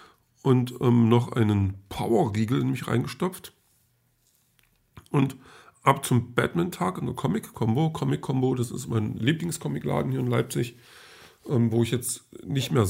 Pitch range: 115-130 Hz